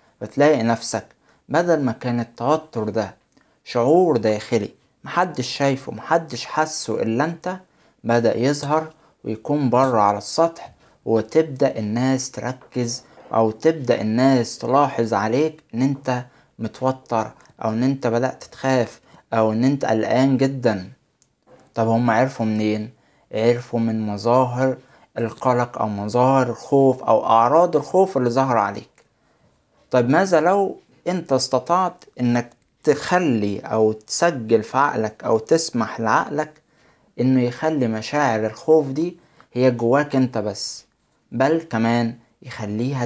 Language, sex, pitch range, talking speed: Arabic, male, 115-145 Hz, 120 wpm